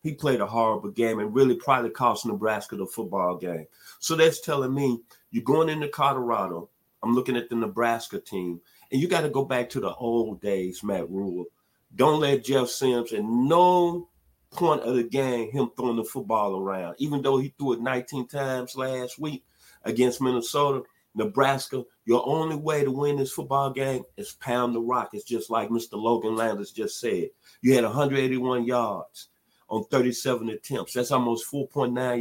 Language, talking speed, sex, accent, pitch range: English, 180 wpm, male, American, 115-140 Hz